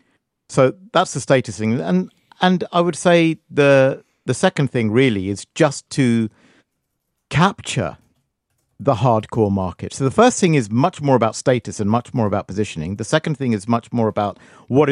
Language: English